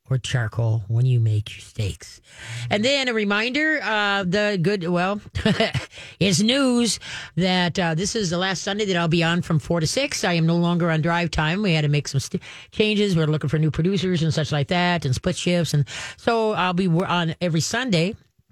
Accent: American